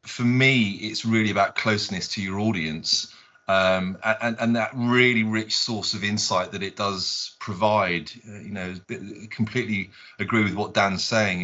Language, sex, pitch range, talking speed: English, male, 100-120 Hz, 170 wpm